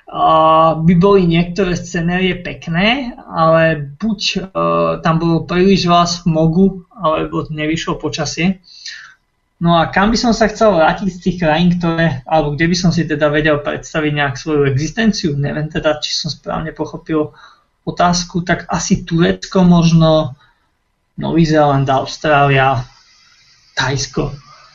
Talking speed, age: 140 wpm, 20-39